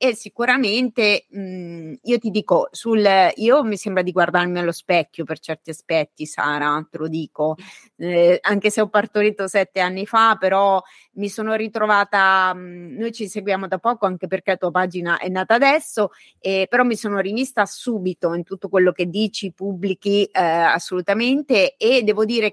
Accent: native